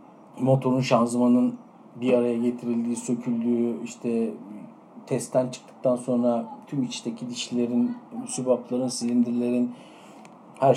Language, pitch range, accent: Turkish, 115-150 Hz, native